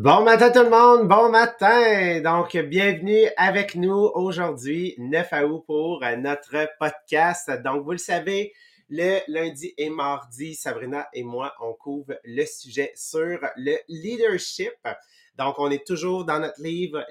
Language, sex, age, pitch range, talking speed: English, male, 30-49, 140-185 Hz, 145 wpm